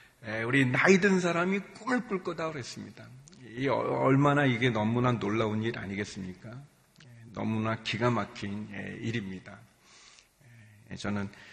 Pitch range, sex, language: 120-200 Hz, male, Korean